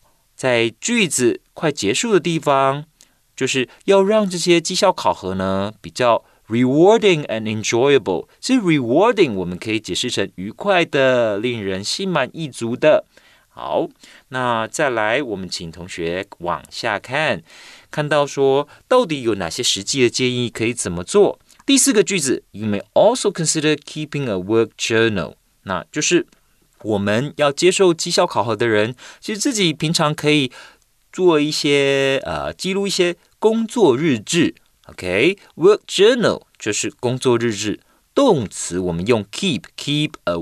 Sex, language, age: male, Chinese, 30-49